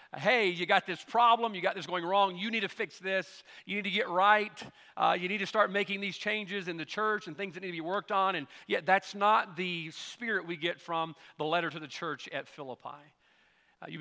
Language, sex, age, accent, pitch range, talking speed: English, male, 40-59, American, 160-210 Hz, 245 wpm